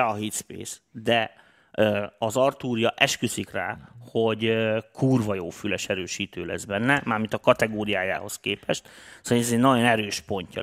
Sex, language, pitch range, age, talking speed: male, Hungarian, 100-120 Hz, 30-49, 140 wpm